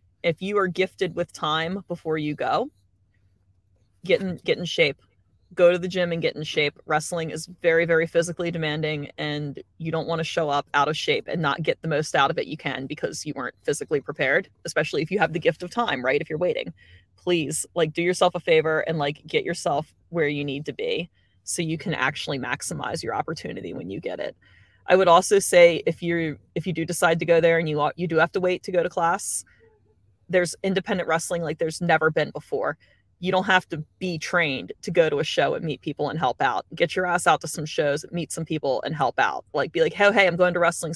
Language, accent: English, American